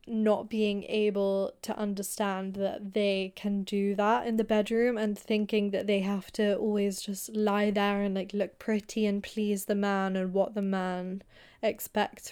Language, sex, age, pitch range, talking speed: English, female, 10-29, 195-215 Hz, 175 wpm